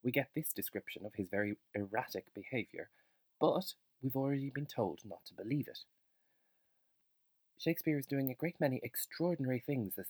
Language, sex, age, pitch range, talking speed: English, male, 30-49, 100-135 Hz, 160 wpm